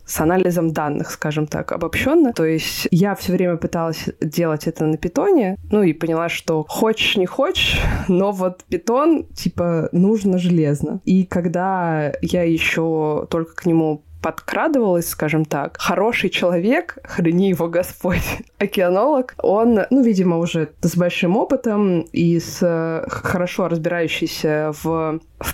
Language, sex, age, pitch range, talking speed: Russian, female, 20-39, 165-215 Hz, 135 wpm